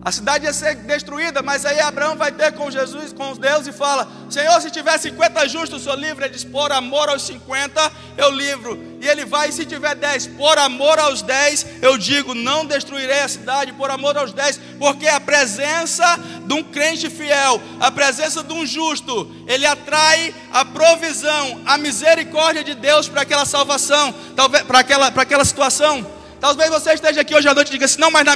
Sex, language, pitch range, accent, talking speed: male, Portuguese, 270-310 Hz, Brazilian, 195 wpm